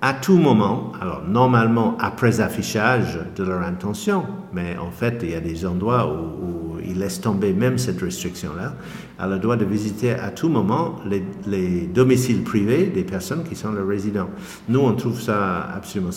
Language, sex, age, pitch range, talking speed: French, male, 50-69, 95-130 Hz, 180 wpm